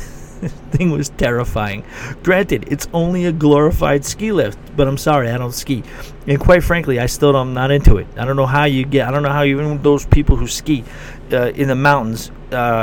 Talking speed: 205 wpm